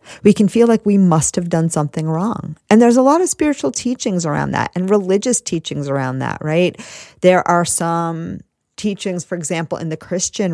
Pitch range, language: 155-195 Hz, English